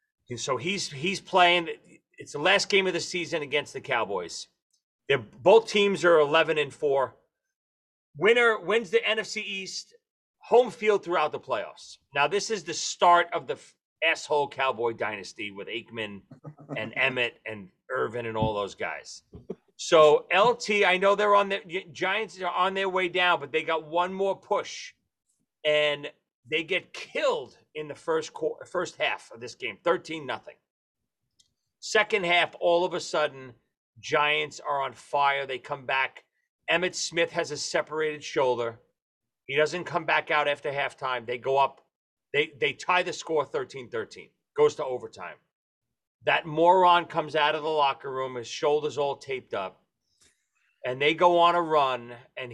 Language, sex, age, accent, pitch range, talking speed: English, male, 40-59, American, 140-195 Hz, 165 wpm